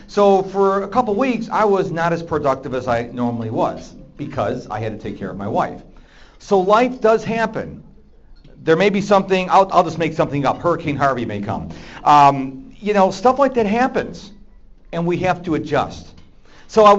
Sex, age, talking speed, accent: male, 40-59, 200 wpm, American